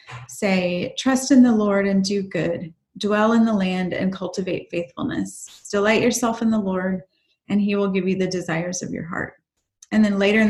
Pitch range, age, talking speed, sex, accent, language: 185-220 Hz, 30-49, 195 wpm, female, American, English